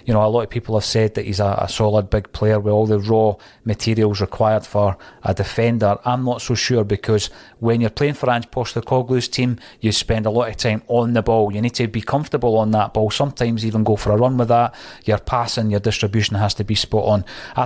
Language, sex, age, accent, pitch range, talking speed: English, male, 30-49, British, 105-120 Hz, 250 wpm